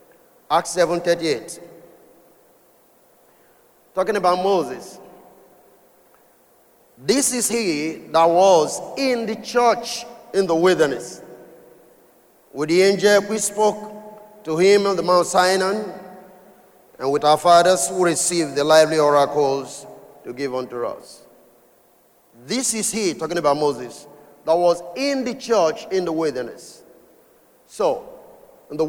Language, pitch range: English, 165-215 Hz